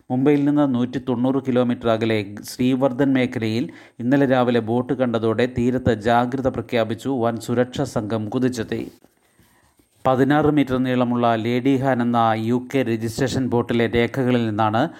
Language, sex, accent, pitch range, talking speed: Malayalam, male, native, 120-130 Hz, 115 wpm